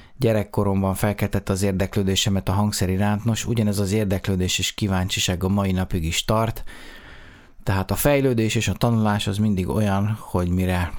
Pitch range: 95-115 Hz